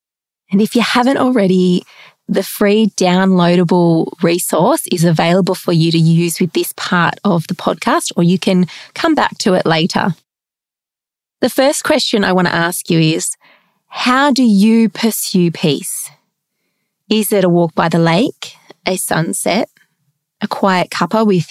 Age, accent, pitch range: 30-49, Australian, 175-225 Hz